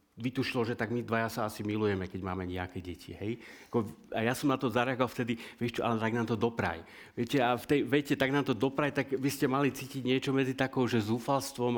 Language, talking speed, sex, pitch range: Slovak, 235 wpm, male, 105-120 Hz